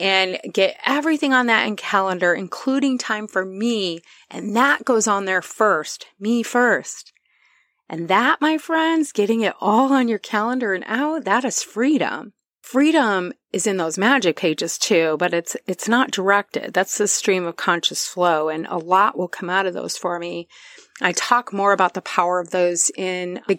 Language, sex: English, female